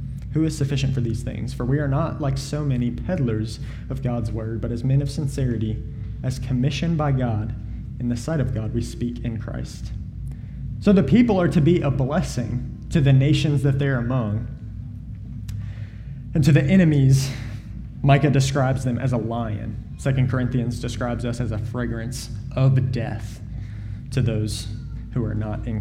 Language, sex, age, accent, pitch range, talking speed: English, male, 20-39, American, 115-140 Hz, 175 wpm